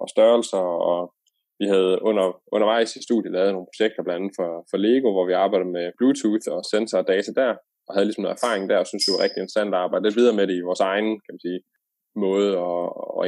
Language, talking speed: English, 245 wpm